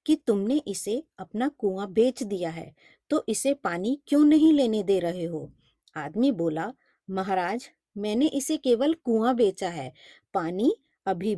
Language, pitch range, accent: Hindi, 185-280 Hz, native